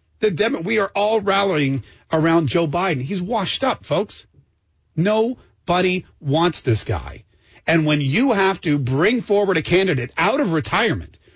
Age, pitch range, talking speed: 40-59, 170-225 Hz, 145 wpm